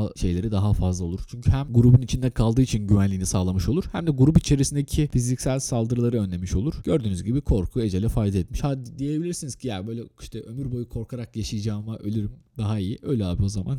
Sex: male